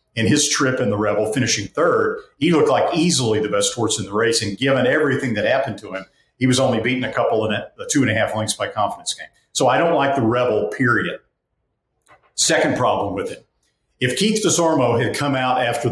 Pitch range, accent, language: 110-150 Hz, American, English